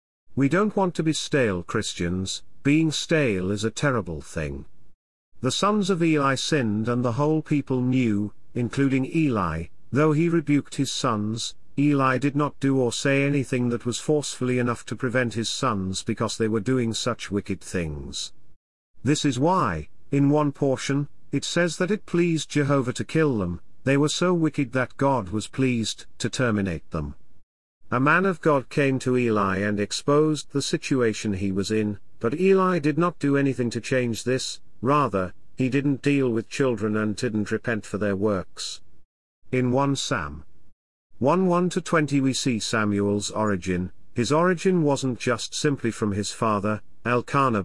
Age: 50-69